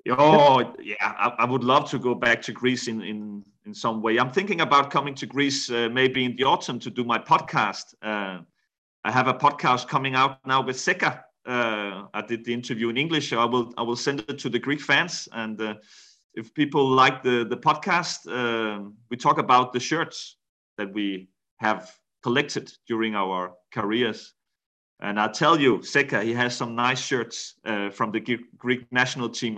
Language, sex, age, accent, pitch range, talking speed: Greek, male, 30-49, Danish, 110-135 Hz, 195 wpm